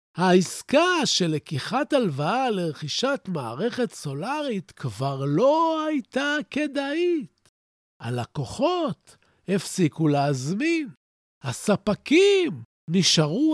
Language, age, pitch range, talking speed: Hebrew, 50-69, 155-240 Hz, 70 wpm